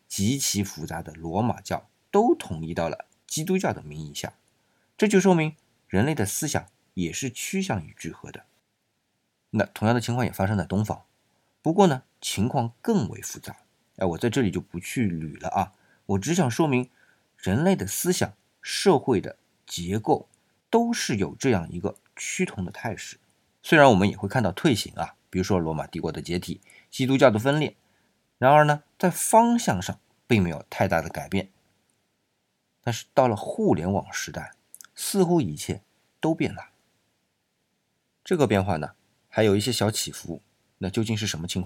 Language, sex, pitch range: Chinese, male, 90-130 Hz